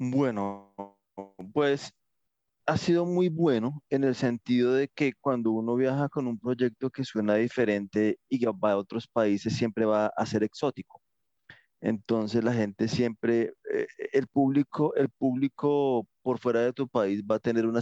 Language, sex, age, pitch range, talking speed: Spanish, male, 30-49, 110-130 Hz, 160 wpm